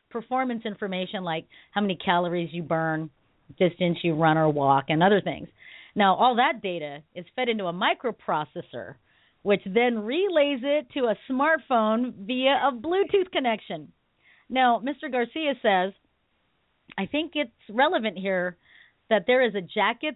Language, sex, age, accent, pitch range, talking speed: English, female, 40-59, American, 185-255 Hz, 150 wpm